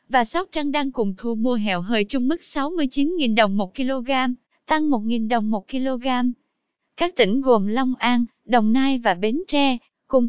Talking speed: 180 wpm